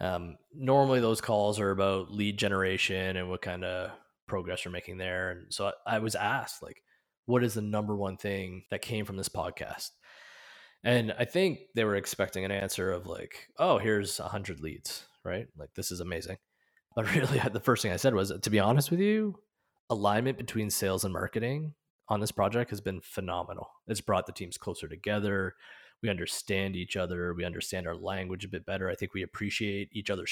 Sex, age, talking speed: male, 20-39, 200 wpm